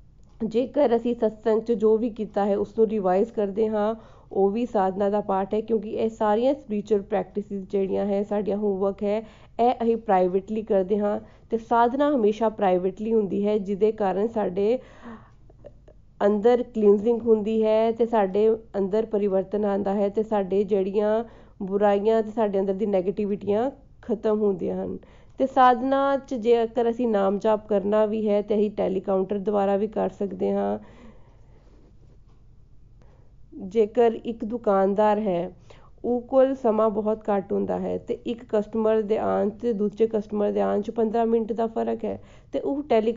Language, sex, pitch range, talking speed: Punjabi, female, 195-225 Hz, 140 wpm